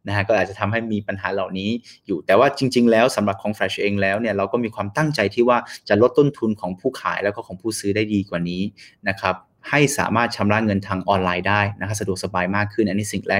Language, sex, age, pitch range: Thai, male, 20-39, 100-120 Hz